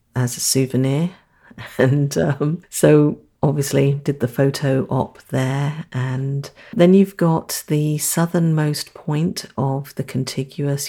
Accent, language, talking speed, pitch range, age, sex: British, English, 120 wpm, 130-155 Hz, 50-69, female